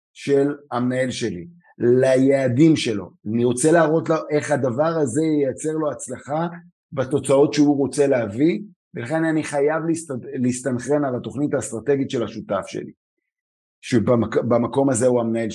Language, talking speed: Hebrew, 135 wpm